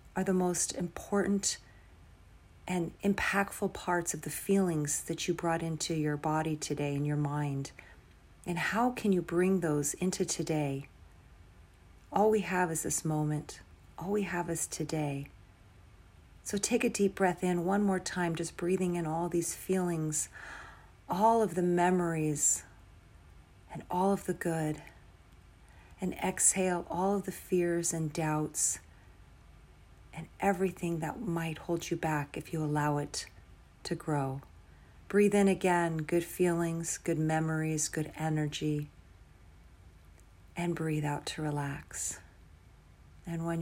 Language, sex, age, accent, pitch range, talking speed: English, female, 40-59, American, 130-175 Hz, 140 wpm